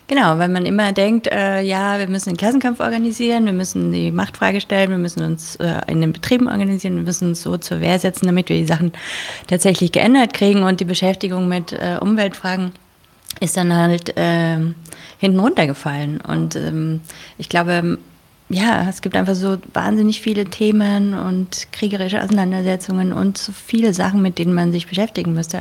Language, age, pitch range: German, 30-49, 165-195 Hz